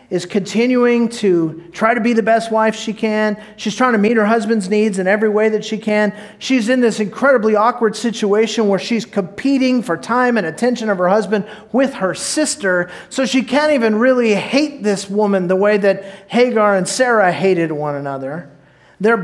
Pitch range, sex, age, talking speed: 190-240 Hz, male, 40-59, 190 wpm